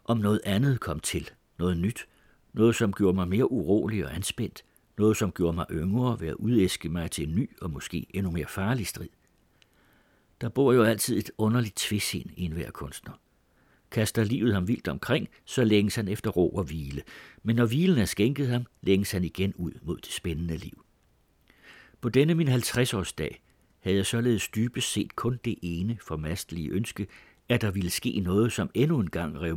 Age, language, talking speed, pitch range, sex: 60-79, Danish, 190 wpm, 85-115 Hz, male